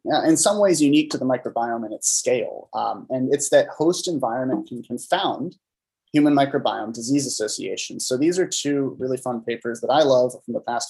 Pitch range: 125-180 Hz